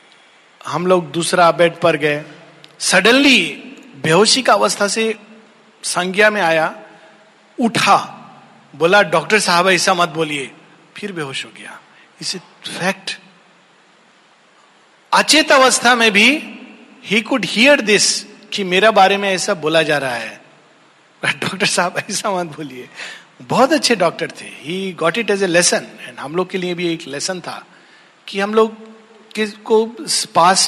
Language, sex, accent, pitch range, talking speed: Hindi, male, native, 175-220 Hz, 140 wpm